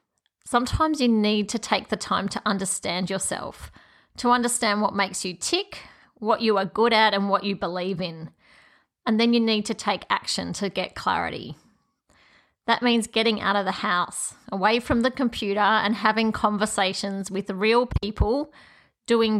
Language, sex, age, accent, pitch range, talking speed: English, female, 30-49, Australian, 200-235 Hz, 165 wpm